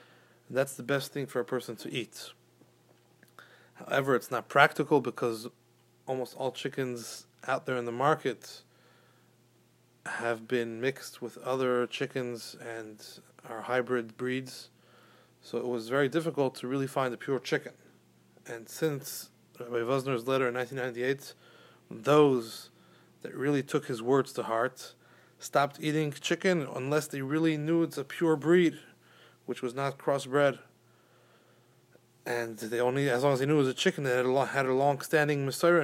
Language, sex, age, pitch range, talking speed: English, male, 30-49, 120-155 Hz, 150 wpm